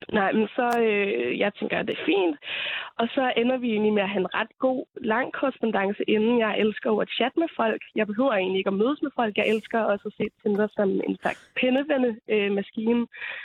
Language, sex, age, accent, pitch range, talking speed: Danish, female, 20-39, native, 205-260 Hz, 225 wpm